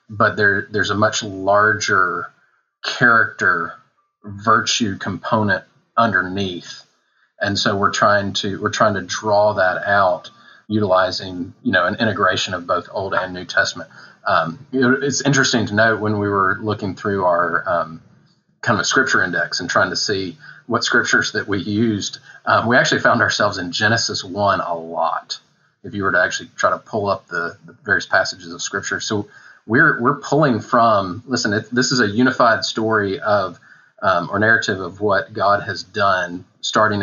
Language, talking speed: English, 170 wpm